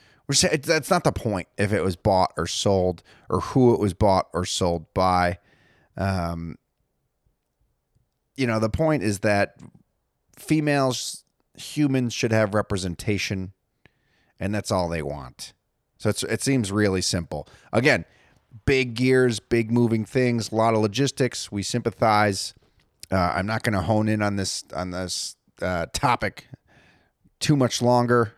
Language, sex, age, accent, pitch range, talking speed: English, male, 30-49, American, 100-140 Hz, 145 wpm